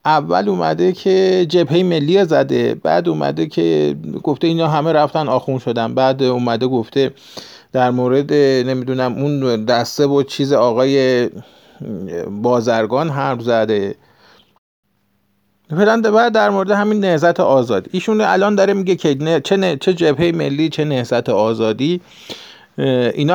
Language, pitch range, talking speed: Persian, 130-185 Hz, 120 wpm